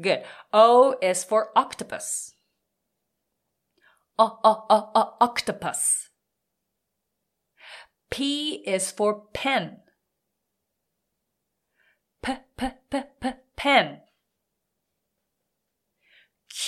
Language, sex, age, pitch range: Japanese, female, 30-49, 195-270 Hz